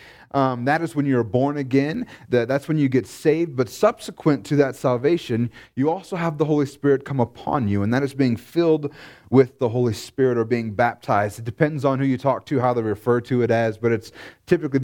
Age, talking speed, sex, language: 30-49, 220 wpm, male, English